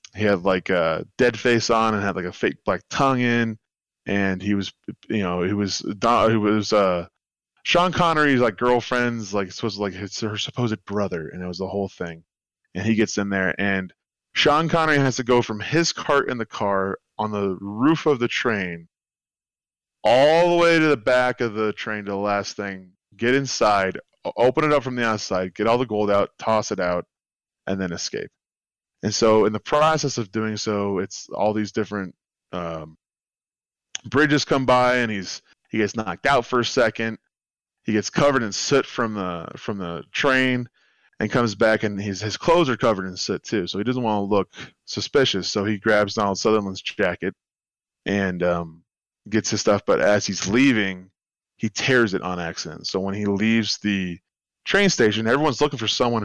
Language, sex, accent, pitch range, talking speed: English, male, American, 95-125 Hz, 195 wpm